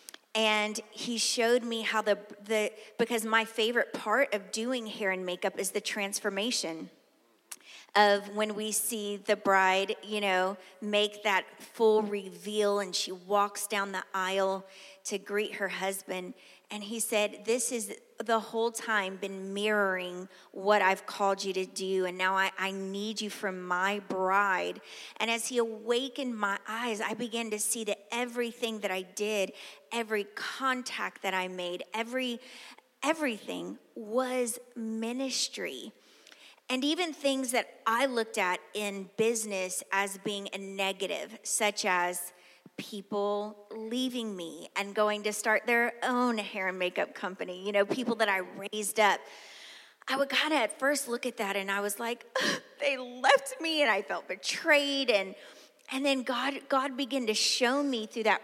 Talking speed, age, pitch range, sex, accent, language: 160 wpm, 30-49, 195-240 Hz, female, American, English